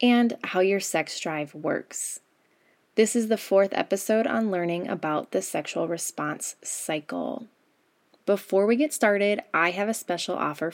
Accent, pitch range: American, 170-230 Hz